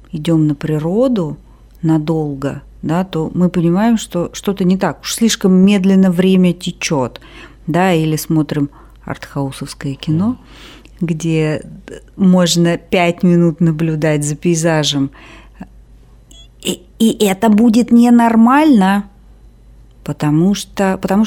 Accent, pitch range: native, 155-205 Hz